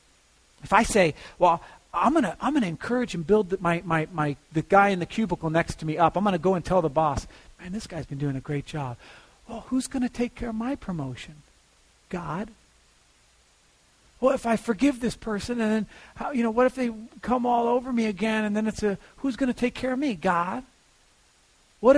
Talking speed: 215 wpm